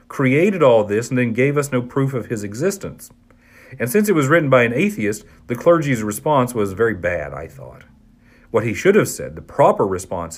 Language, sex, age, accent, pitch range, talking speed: English, male, 40-59, American, 110-145 Hz, 210 wpm